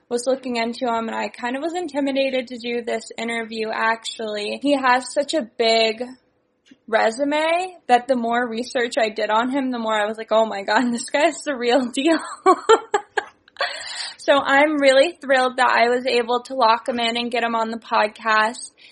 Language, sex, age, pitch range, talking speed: English, female, 10-29, 220-265 Hz, 190 wpm